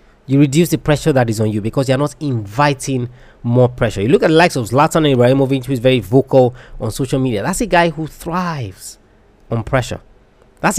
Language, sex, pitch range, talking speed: English, male, 120-155 Hz, 210 wpm